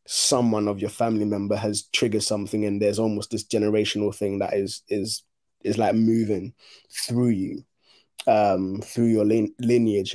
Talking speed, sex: 155 wpm, male